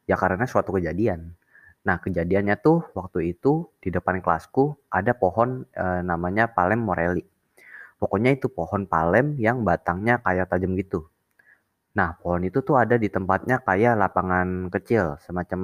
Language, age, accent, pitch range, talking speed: Indonesian, 20-39, native, 90-110 Hz, 145 wpm